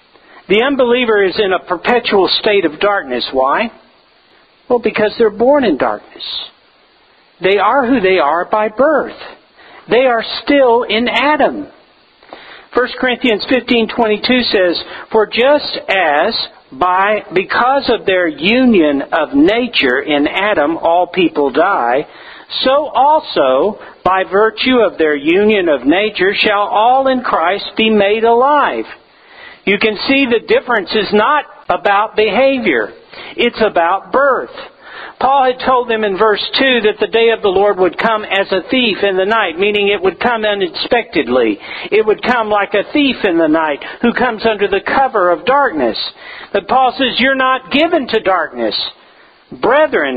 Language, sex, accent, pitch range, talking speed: English, male, American, 200-265 Hz, 150 wpm